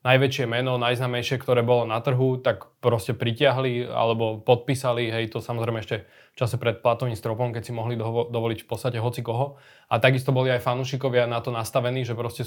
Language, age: Slovak, 20-39